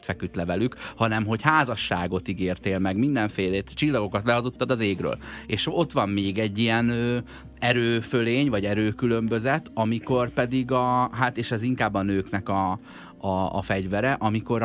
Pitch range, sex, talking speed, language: 95-120 Hz, male, 150 wpm, Hungarian